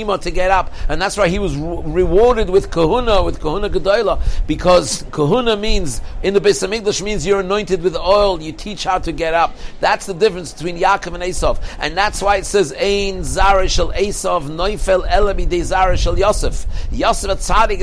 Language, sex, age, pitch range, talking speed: English, male, 60-79, 175-200 Hz, 185 wpm